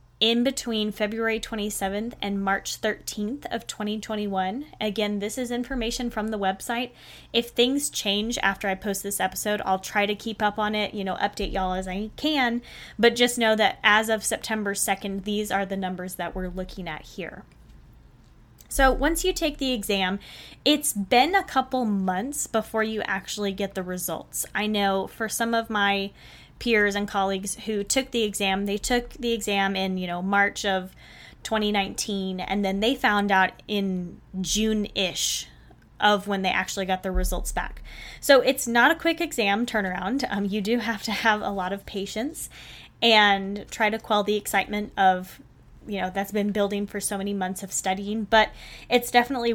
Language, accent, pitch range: English, American, 195-230 Hz